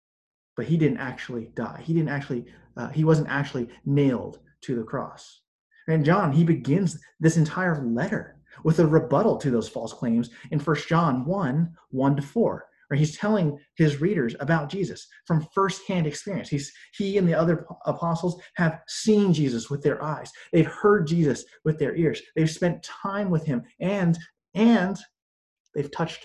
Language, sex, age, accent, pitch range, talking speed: English, male, 30-49, American, 140-180 Hz, 165 wpm